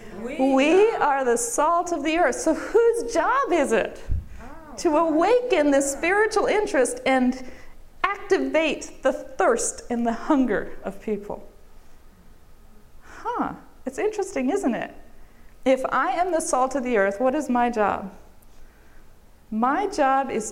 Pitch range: 240-320 Hz